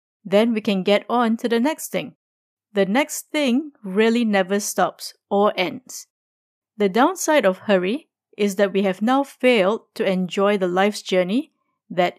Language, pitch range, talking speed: English, 195-245 Hz, 160 wpm